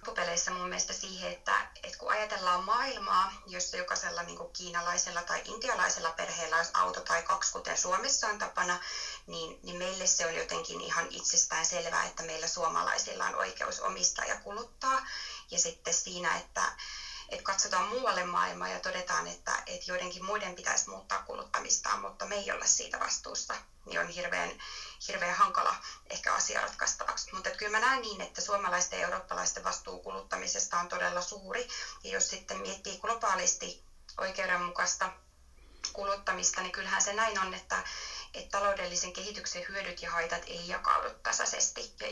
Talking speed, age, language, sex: 150 wpm, 30-49, Finnish, female